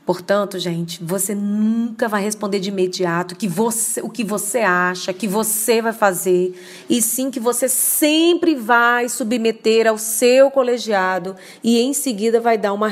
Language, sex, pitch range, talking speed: Portuguese, female, 190-255 Hz, 160 wpm